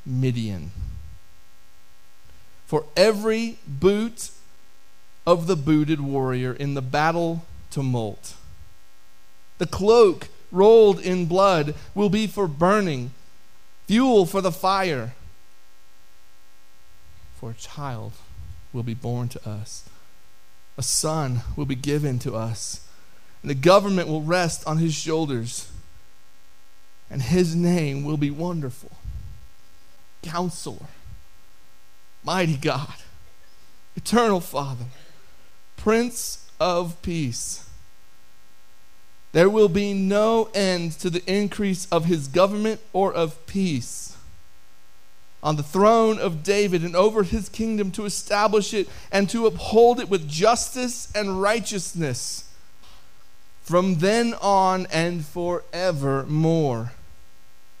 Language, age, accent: English, 40-59, American